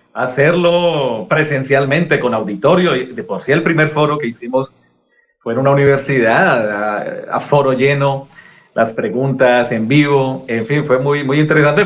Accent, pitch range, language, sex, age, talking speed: Mexican, 125-155 Hz, Spanish, male, 40-59, 155 wpm